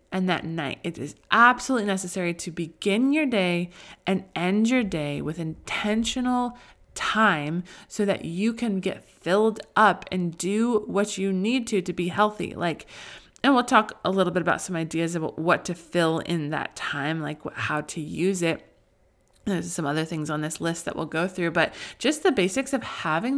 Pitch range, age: 160-205 Hz, 20-39